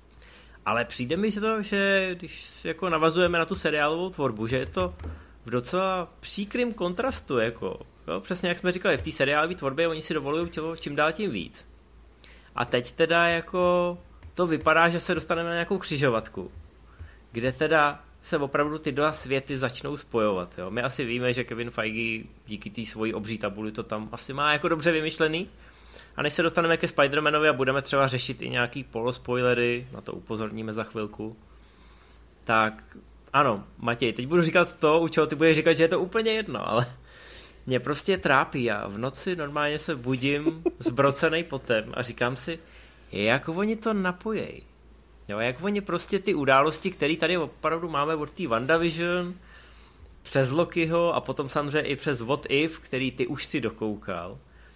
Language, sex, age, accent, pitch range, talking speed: Czech, male, 30-49, native, 115-170 Hz, 175 wpm